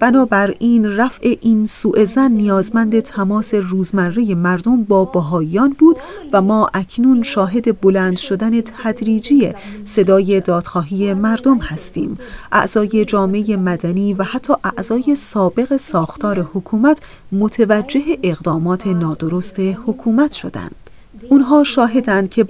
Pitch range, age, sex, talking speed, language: 195-245 Hz, 30-49, female, 105 wpm, Persian